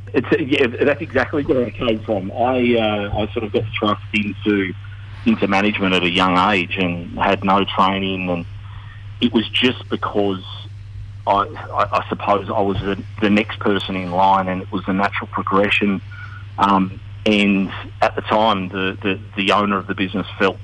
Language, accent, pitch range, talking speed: English, Australian, 95-105 Hz, 180 wpm